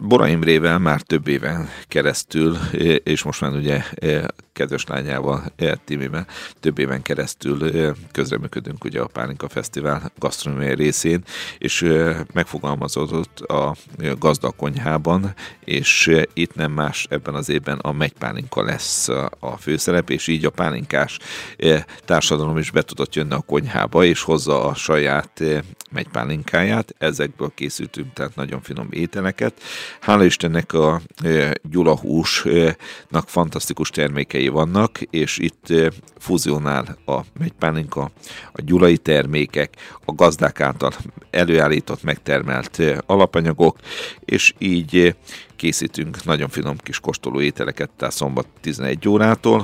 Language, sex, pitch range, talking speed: Hungarian, male, 70-85 Hz, 110 wpm